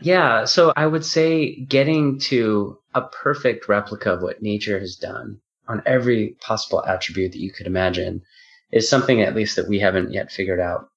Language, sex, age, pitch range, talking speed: English, male, 30-49, 95-115 Hz, 180 wpm